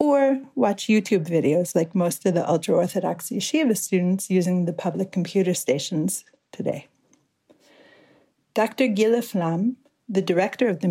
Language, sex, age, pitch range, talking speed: English, female, 40-59, 180-225 Hz, 125 wpm